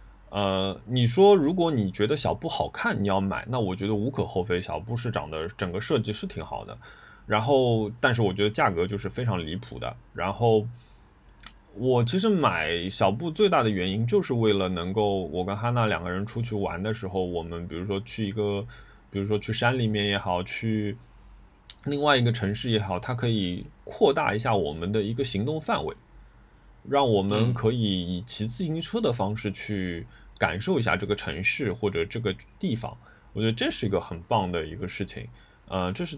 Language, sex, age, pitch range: Chinese, male, 20-39, 95-120 Hz